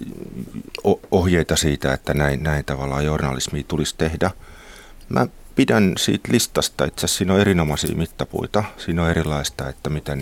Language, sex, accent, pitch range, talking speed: Finnish, male, native, 70-90 Hz, 140 wpm